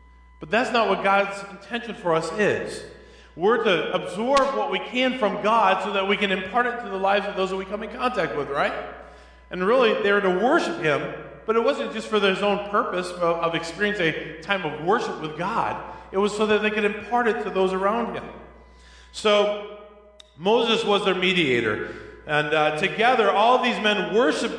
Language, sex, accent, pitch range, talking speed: English, male, American, 155-210 Hz, 200 wpm